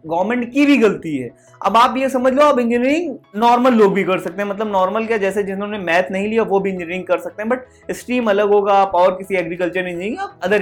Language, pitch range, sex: Hindi, 195-265 Hz, male